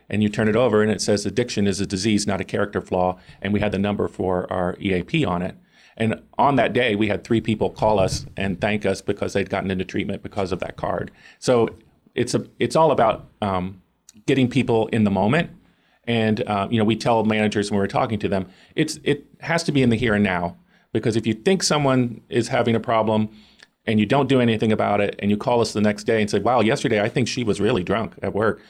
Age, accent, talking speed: 40-59, American, 240 wpm